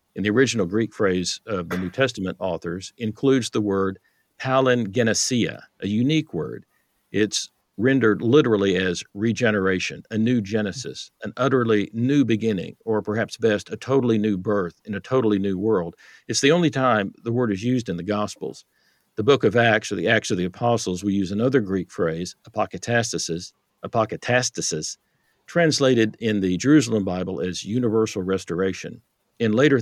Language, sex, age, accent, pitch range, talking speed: English, male, 50-69, American, 95-120 Hz, 160 wpm